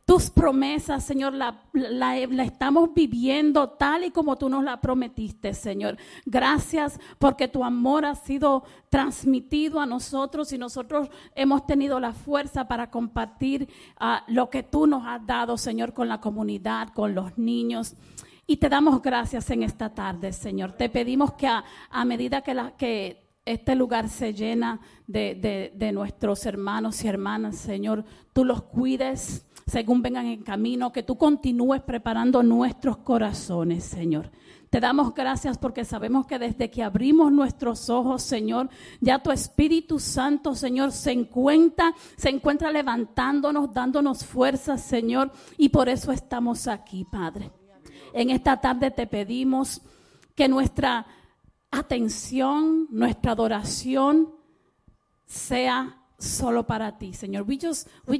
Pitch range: 235-280 Hz